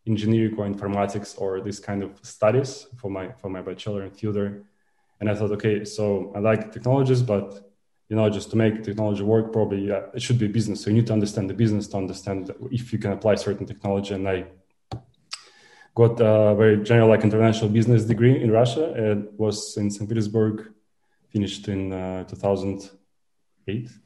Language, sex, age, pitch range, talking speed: English, male, 20-39, 100-115 Hz, 180 wpm